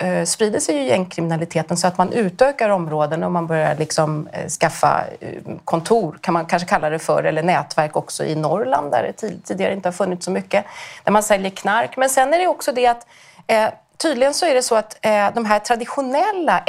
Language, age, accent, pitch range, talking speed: Swedish, 30-49, native, 175-250 Hz, 195 wpm